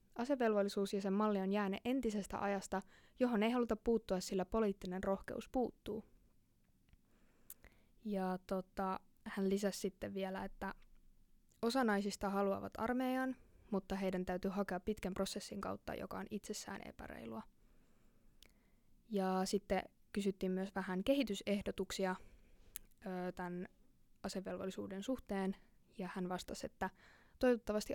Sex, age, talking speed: female, 20-39, 110 wpm